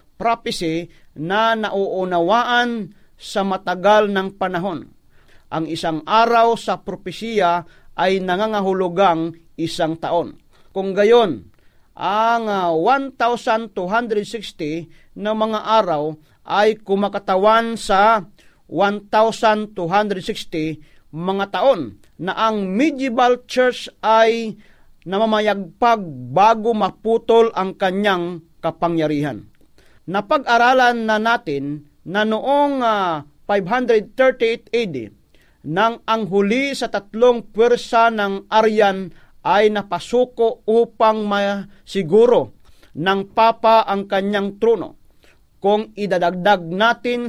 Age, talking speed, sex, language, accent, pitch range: 40-59, 85 wpm, male, Filipino, native, 180-230 Hz